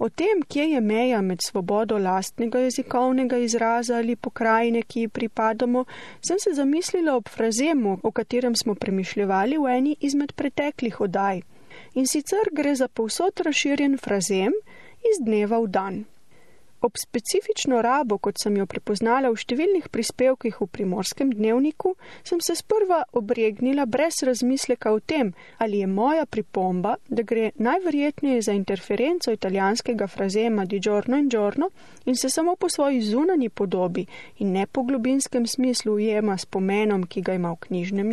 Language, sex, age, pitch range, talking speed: Italian, female, 30-49, 210-290 Hz, 150 wpm